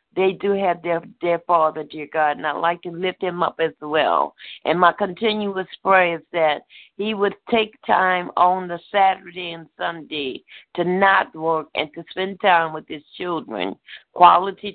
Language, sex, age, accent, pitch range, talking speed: English, female, 50-69, American, 170-200 Hz, 175 wpm